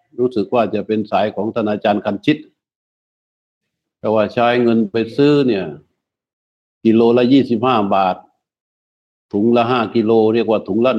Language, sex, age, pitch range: Thai, male, 60-79, 105-125 Hz